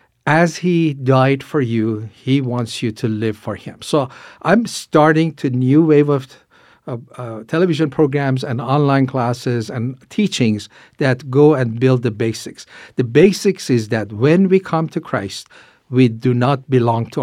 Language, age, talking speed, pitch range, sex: English, 50-69, 165 wpm, 120-165 Hz, male